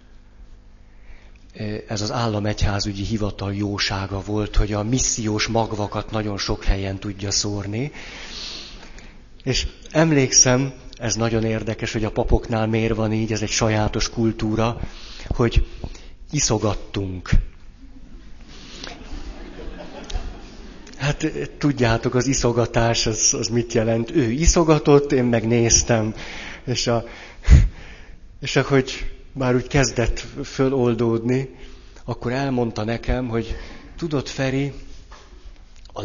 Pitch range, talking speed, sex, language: 100-125 Hz, 95 wpm, male, Hungarian